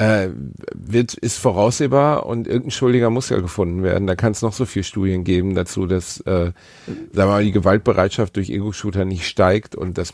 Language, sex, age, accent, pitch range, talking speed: German, male, 40-59, German, 90-115 Hz, 165 wpm